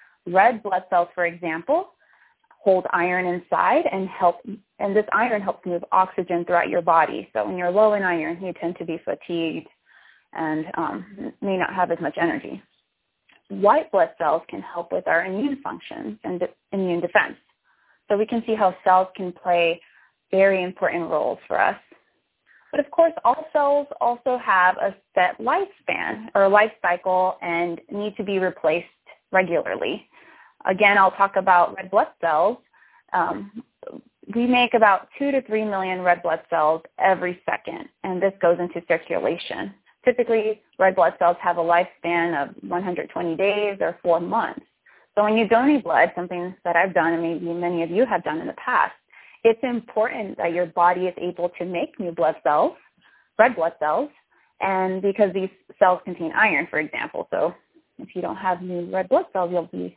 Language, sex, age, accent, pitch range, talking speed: English, female, 20-39, American, 175-215 Hz, 175 wpm